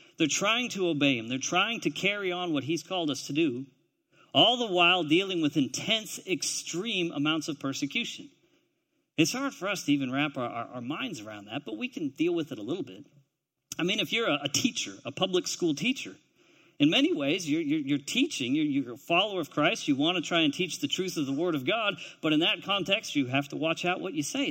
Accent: American